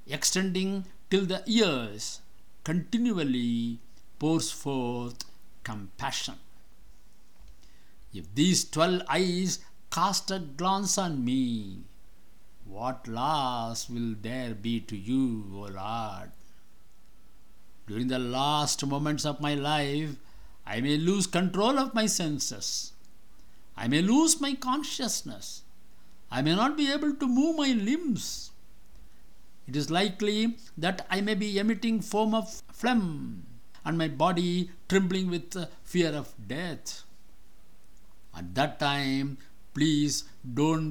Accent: Indian